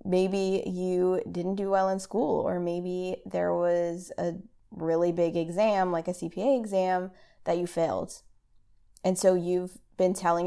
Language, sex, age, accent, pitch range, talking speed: English, female, 20-39, American, 170-195 Hz, 155 wpm